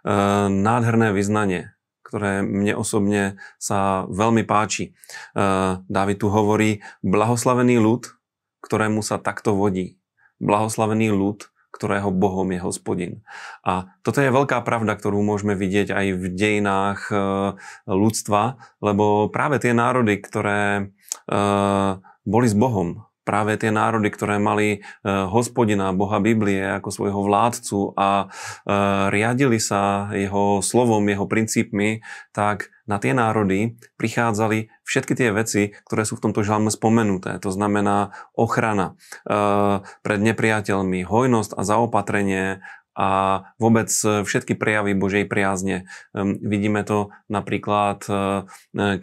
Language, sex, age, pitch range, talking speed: Slovak, male, 30-49, 100-110 Hz, 120 wpm